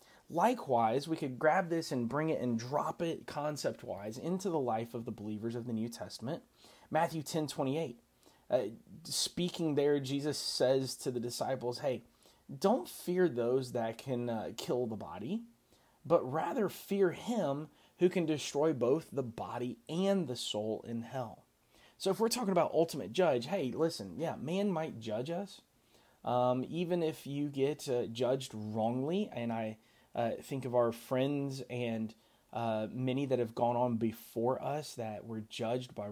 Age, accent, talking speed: 30-49, American, 165 wpm